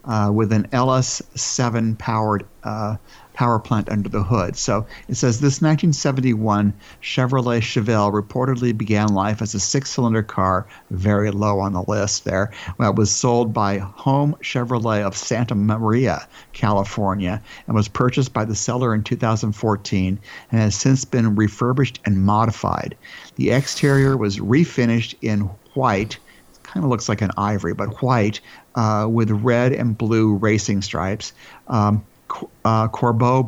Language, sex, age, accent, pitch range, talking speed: English, male, 60-79, American, 105-120 Hz, 145 wpm